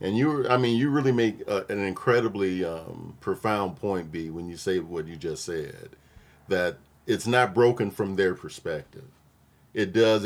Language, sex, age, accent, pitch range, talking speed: English, male, 40-59, American, 85-105 Hz, 170 wpm